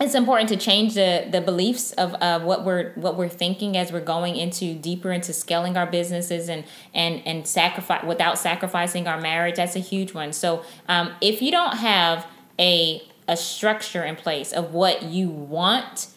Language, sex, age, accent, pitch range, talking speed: English, female, 20-39, American, 170-205 Hz, 185 wpm